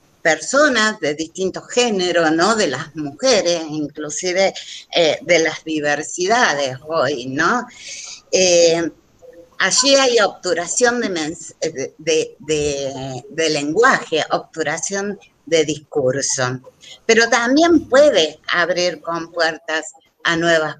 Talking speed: 105 wpm